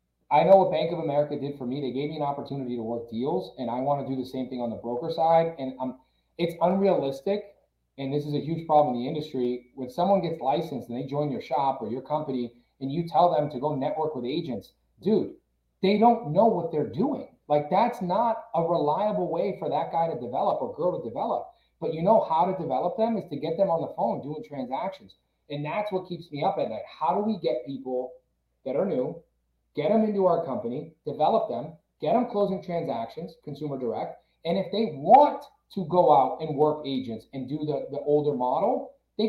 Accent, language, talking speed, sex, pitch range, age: American, English, 220 wpm, male, 135-205 Hz, 30-49